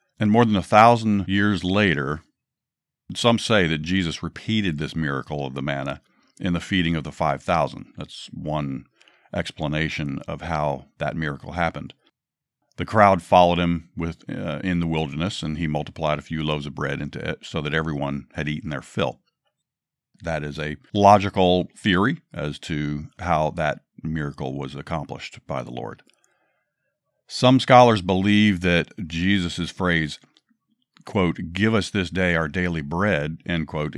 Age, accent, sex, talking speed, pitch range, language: 50-69, American, male, 155 wpm, 75-95 Hz, English